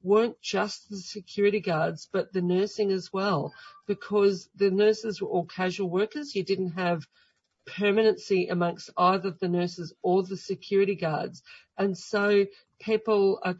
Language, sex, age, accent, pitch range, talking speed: English, female, 50-69, Australian, 180-205 Hz, 145 wpm